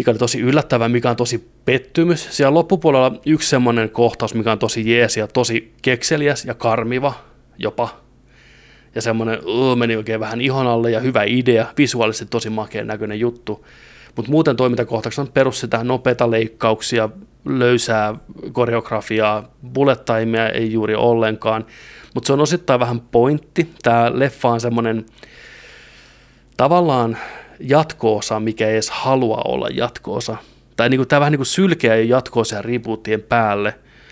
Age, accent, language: 20-39, native, Finnish